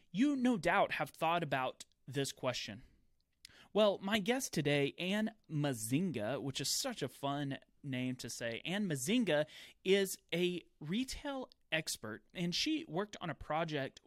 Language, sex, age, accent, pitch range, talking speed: English, male, 30-49, American, 140-210 Hz, 145 wpm